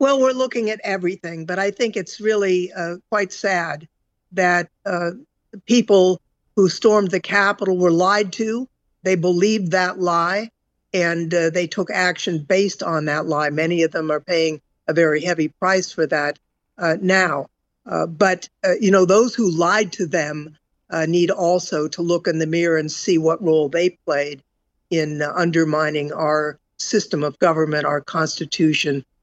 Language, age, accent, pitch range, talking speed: English, 60-79, American, 155-185 Hz, 170 wpm